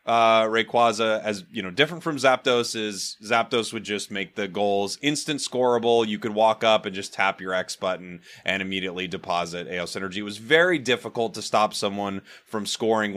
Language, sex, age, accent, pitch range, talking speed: English, male, 30-49, American, 100-130 Hz, 180 wpm